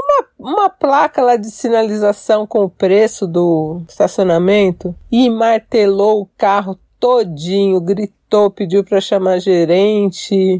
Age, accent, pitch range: 40-59, Brazilian, 185-240 Hz